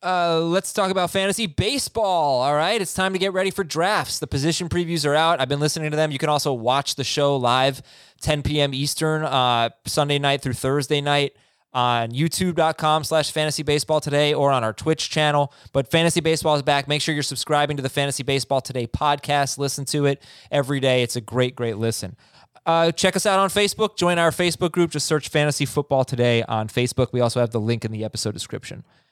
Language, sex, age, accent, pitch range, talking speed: English, male, 20-39, American, 130-160 Hz, 210 wpm